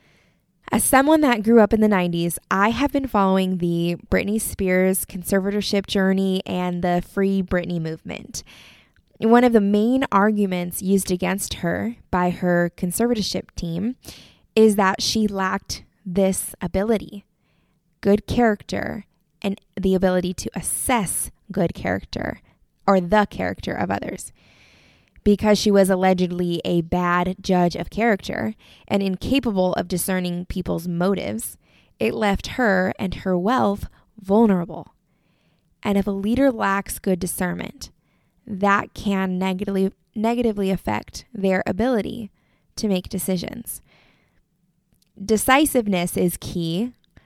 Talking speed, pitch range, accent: 120 wpm, 180-215 Hz, American